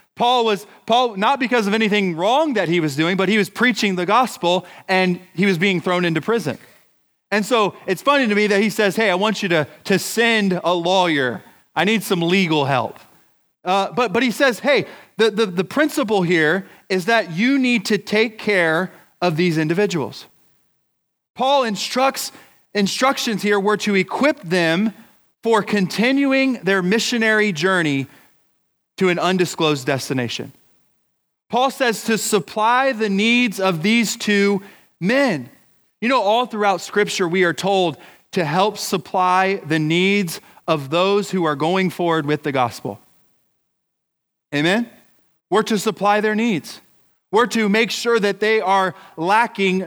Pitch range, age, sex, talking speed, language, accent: 180-220 Hz, 30-49, male, 160 wpm, English, American